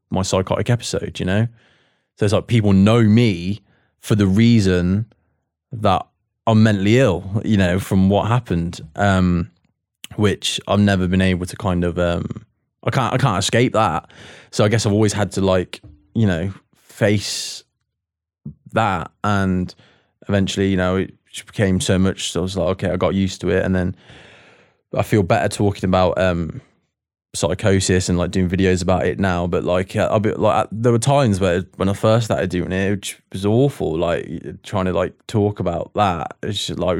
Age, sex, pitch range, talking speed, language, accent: 20-39, male, 95-115 Hz, 185 wpm, English, British